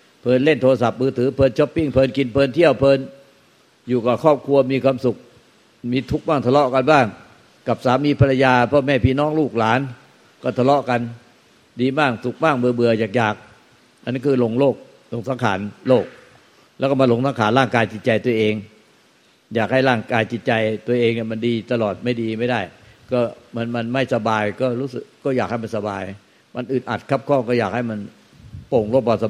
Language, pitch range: Thai, 115-140 Hz